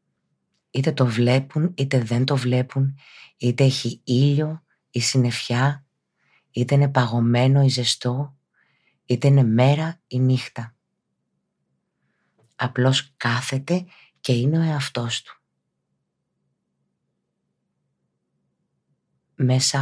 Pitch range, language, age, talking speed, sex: 115-135 Hz, Greek, 30-49, 170 wpm, female